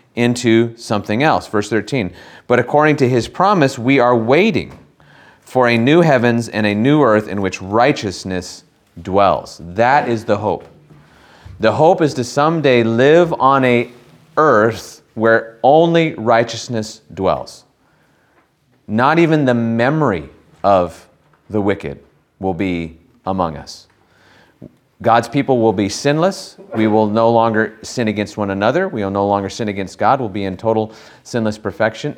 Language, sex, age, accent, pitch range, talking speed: English, male, 30-49, American, 100-130 Hz, 145 wpm